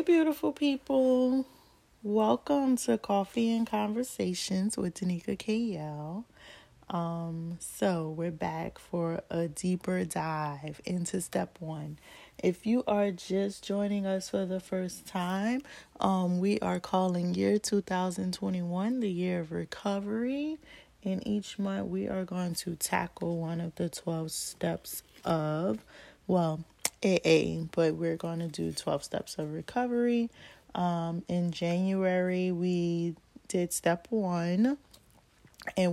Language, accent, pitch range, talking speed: English, American, 165-200 Hz, 120 wpm